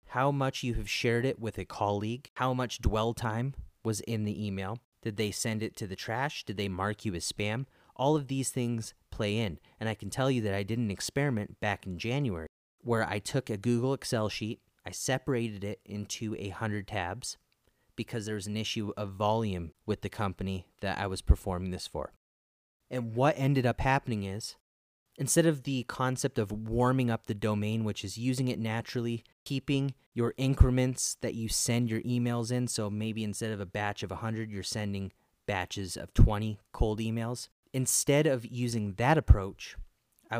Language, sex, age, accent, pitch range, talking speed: English, male, 30-49, American, 105-125 Hz, 190 wpm